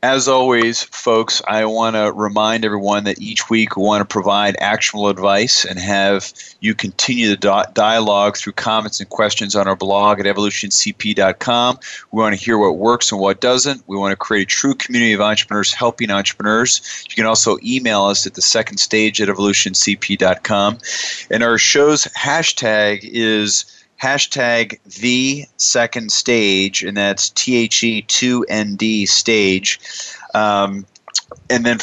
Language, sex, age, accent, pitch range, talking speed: English, male, 30-49, American, 100-115 Hz, 150 wpm